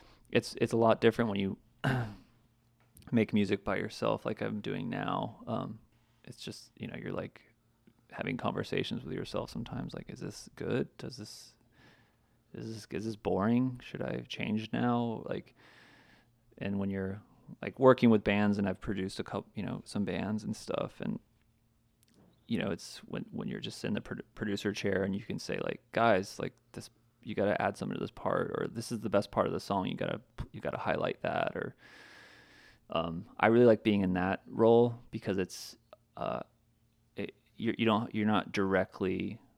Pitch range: 100-115 Hz